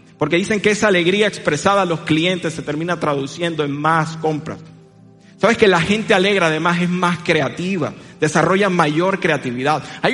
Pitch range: 155-200 Hz